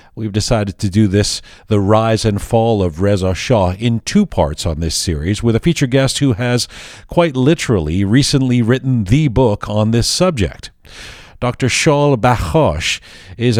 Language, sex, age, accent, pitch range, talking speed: English, male, 50-69, American, 100-125 Hz, 165 wpm